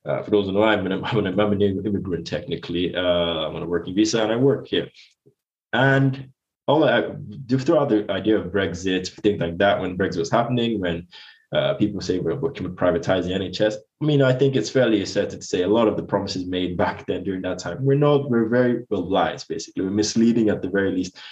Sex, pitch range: male, 90-115 Hz